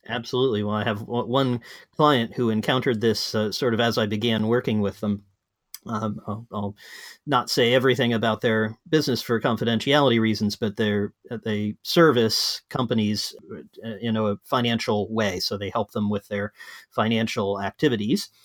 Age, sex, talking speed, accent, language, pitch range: 40-59, male, 155 wpm, American, English, 105-125 Hz